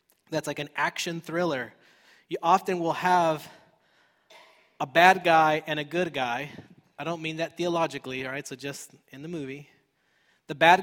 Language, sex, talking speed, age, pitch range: English, male, 165 wpm, 20-39, 145-170 Hz